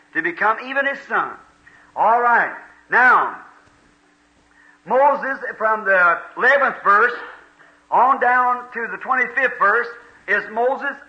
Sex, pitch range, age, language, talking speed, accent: male, 205-290 Hz, 50-69, English, 115 wpm, American